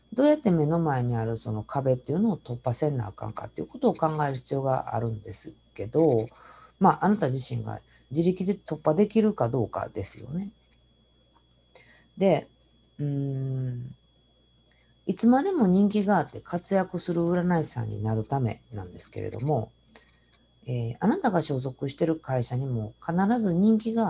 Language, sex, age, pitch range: Japanese, female, 50-69, 115-175 Hz